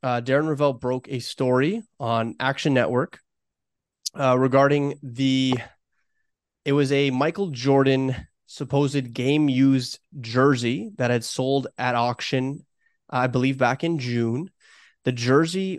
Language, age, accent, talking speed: English, 30-49, American, 125 wpm